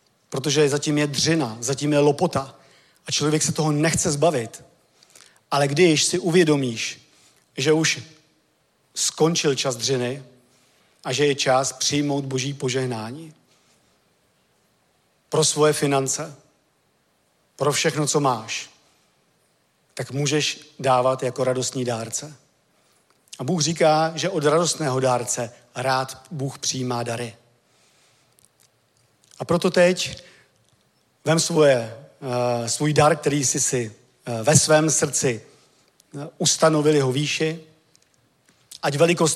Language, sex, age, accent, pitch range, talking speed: Czech, male, 40-59, native, 130-160 Hz, 110 wpm